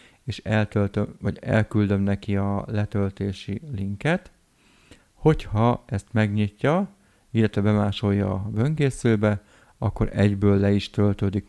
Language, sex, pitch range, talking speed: Hungarian, male, 100-110 Hz, 105 wpm